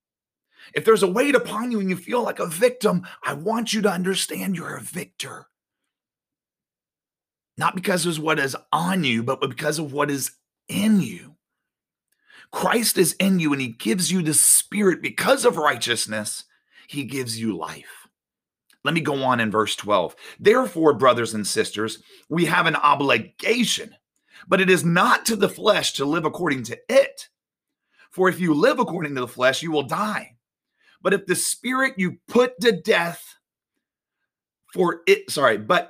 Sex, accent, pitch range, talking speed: male, American, 140-205 Hz, 170 wpm